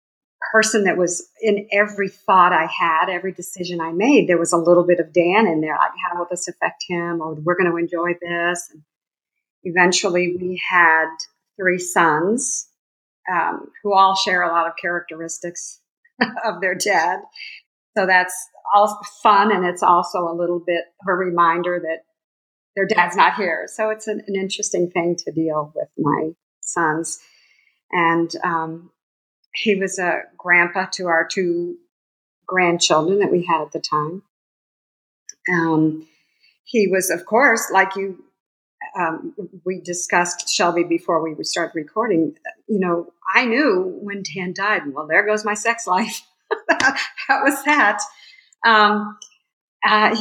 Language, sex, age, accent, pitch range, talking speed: English, female, 50-69, American, 170-210 Hz, 155 wpm